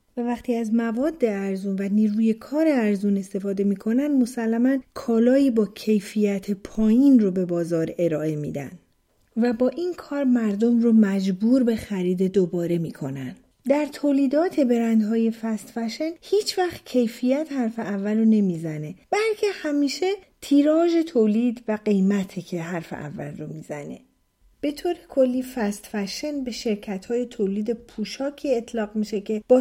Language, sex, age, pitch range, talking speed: Persian, female, 40-59, 200-265 Hz, 140 wpm